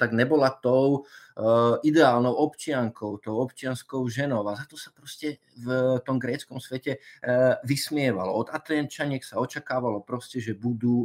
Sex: male